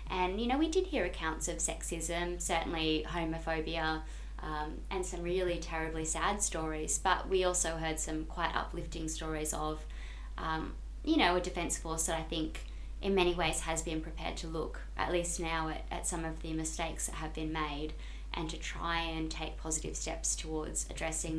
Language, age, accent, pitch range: English, 20-39, Australian, 155-175 Hz